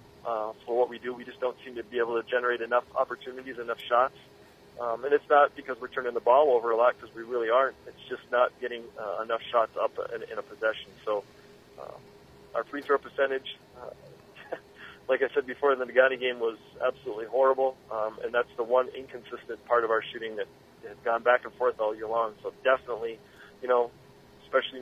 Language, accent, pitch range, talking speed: English, American, 120-140 Hz, 215 wpm